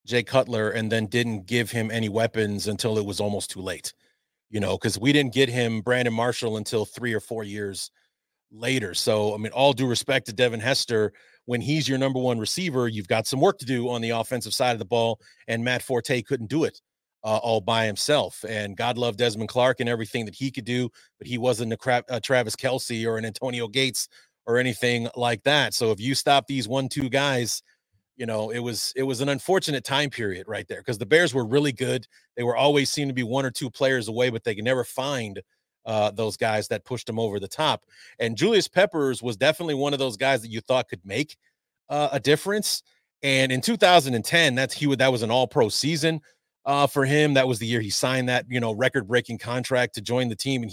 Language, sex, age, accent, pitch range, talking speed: English, male, 30-49, American, 115-135 Hz, 230 wpm